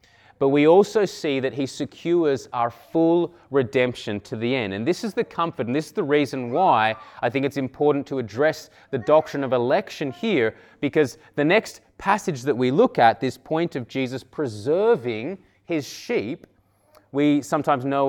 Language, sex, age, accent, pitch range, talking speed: English, male, 20-39, Australian, 135-175 Hz, 175 wpm